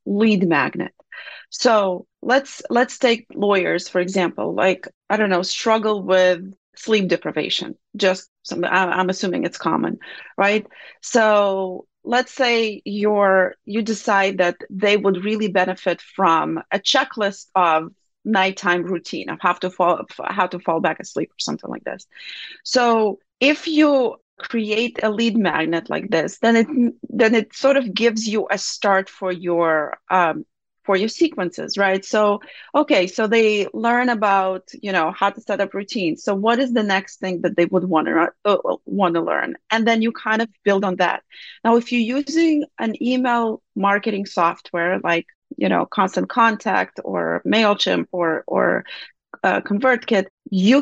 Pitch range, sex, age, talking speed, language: 185-230 Hz, female, 30-49, 160 wpm, English